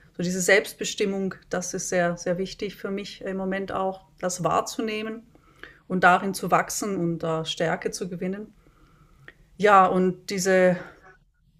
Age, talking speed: 30-49, 145 wpm